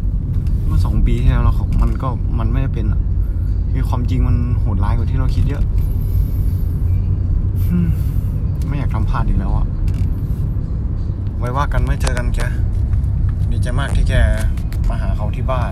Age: 20-39